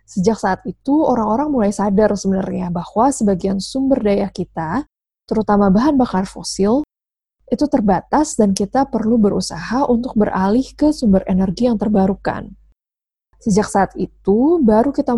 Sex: female